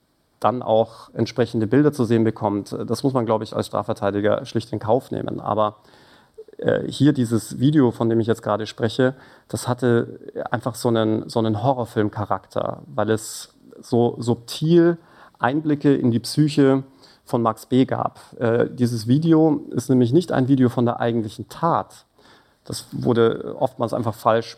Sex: male